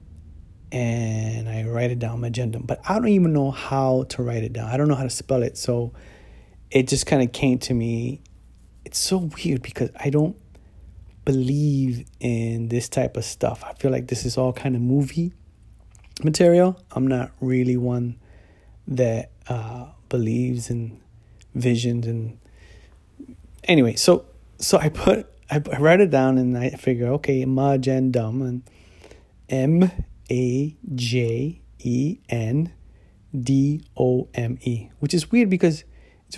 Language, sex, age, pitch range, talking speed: English, male, 30-49, 115-140 Hz, 140 wpm